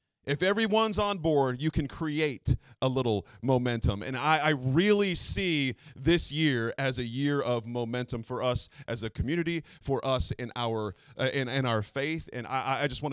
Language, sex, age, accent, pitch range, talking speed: English, male, 30-49, American, 120-150 Hz, 190 wpm